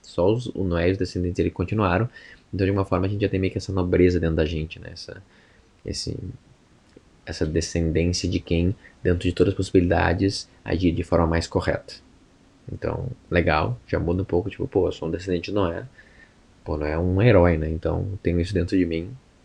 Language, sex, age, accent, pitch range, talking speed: Portuguese, male, 20-39, Brazilian, 85-100 Hz, 210 wpm